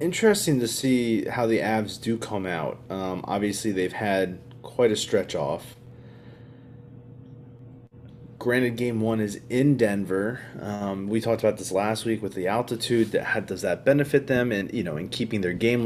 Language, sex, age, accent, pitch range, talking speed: English, male, 20-39, American, 100-125 Hz, 175 wpm